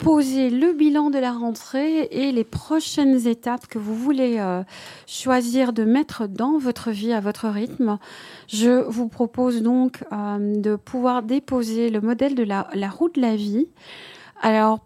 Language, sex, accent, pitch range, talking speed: French, female, French, 205-255 Hz, 165 wpm